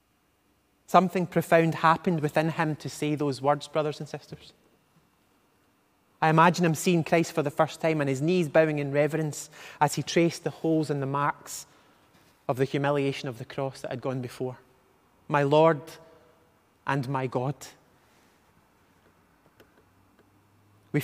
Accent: British